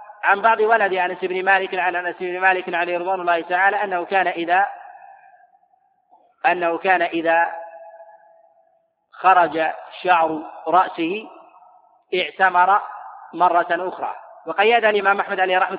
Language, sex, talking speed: Arabic, male, 115 wpm